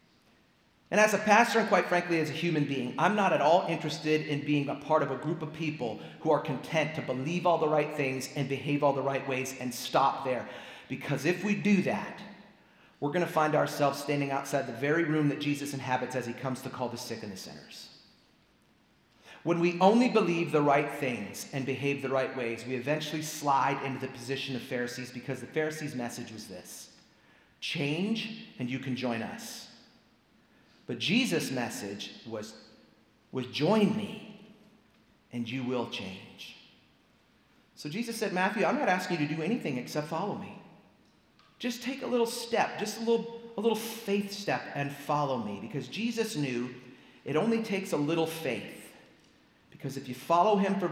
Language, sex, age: English, male, 40-59